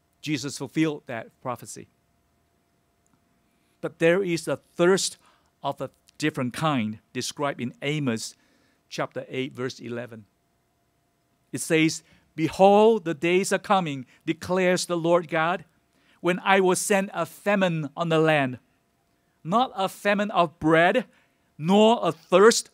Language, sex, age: English, male, 50-69